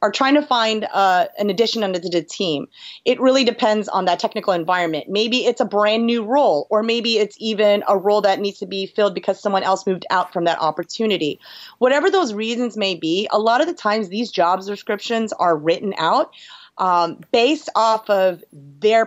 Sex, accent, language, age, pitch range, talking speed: female, American, English, 30-49, 190-240 Hz, 200 wpm